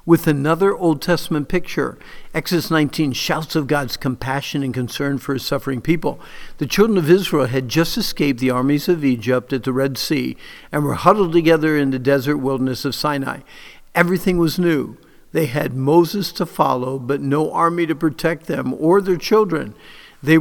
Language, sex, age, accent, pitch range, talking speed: English, male, 50-69, American, 135-170 Hz, 175 wpm